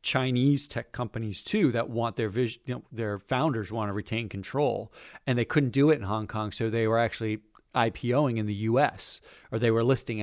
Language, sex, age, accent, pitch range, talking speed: English, male, 40-59, American, 110-150 Hz, 205 wpm